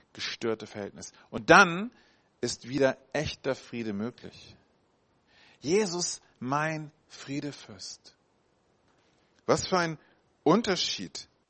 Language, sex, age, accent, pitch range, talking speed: German, male, 40-59, German, 100-150 Hz, 85 wpm